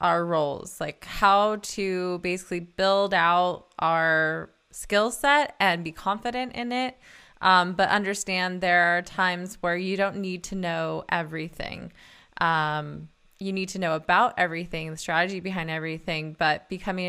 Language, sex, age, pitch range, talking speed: English, female, 20-39, 165-195 Hz, 150 wpm